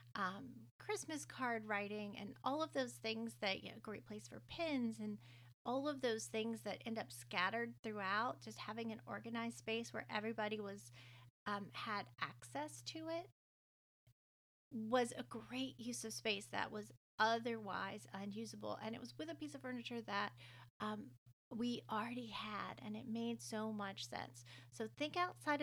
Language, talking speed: English, 165 wpm